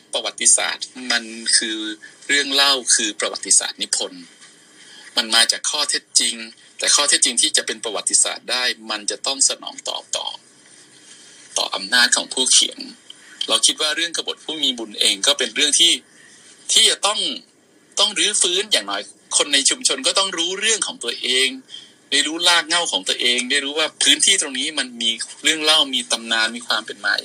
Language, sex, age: Thai, male, 20-39